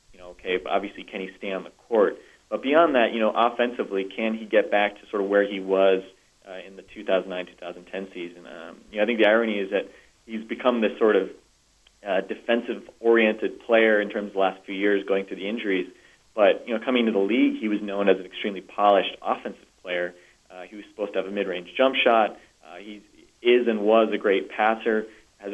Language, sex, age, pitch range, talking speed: English, male, 30-49, 95-110 Hz, 230 wpm